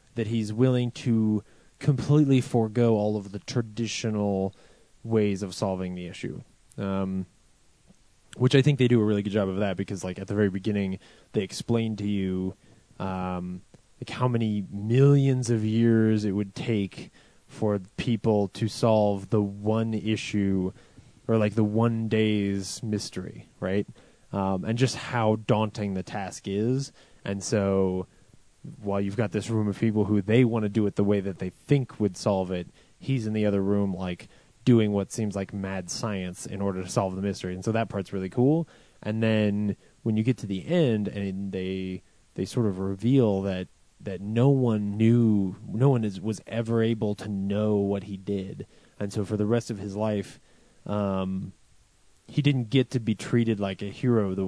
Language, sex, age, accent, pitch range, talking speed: English, male, 20-39, American, 100-115 Hz, 180 wpm